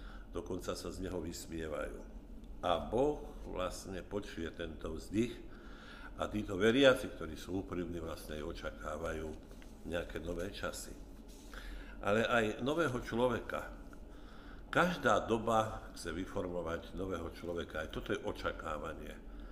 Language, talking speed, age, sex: Slovak, 115 wpm, 60-79, male